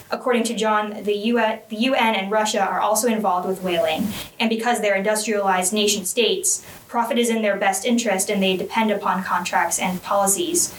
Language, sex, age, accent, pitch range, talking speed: English, female, 10-29, American, 195-230 Hz, 170 wpm